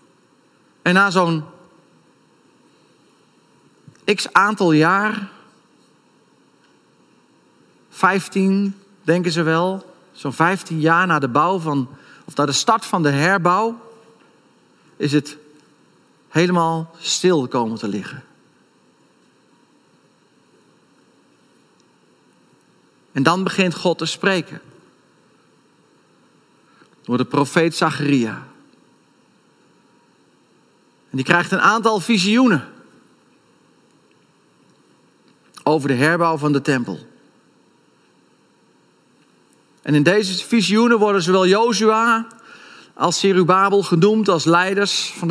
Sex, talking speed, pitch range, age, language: male, 85 wpm, 150-195 Hz, 40-59, Dutch